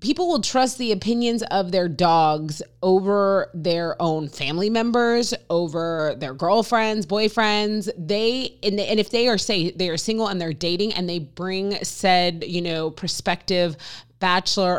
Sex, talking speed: female, 155 wpm